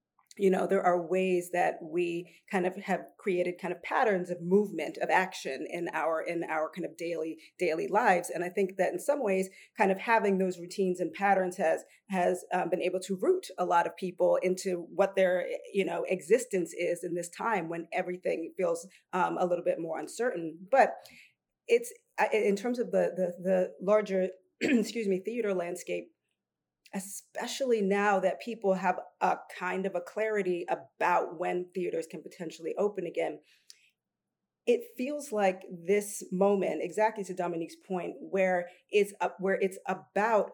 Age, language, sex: 40-59, English, female